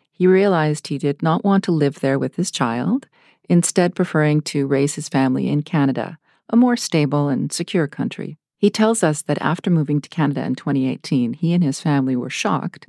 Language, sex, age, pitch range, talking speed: English, female, 40-59, 140-180 Hz, 195 wpm